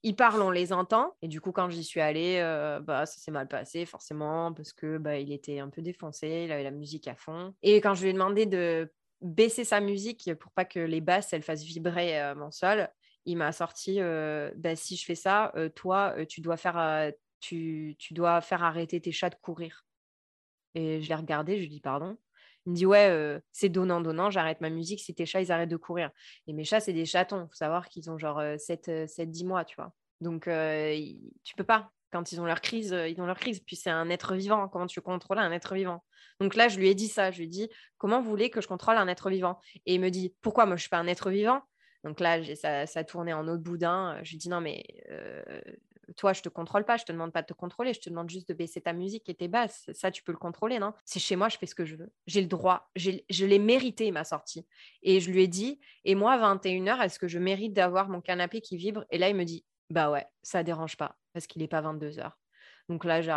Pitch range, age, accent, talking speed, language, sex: 165-195 Hz, 20-39, French, 265 wpm, French, female